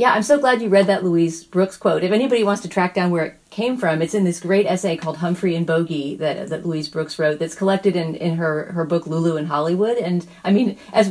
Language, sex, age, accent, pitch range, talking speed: English, female, 40-59, American, 155-190 Hz, 260 wpm